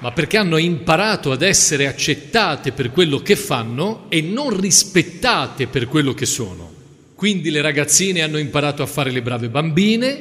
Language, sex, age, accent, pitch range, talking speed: Italian, male, 40-59, native, 135-175 Hz, 165 wpm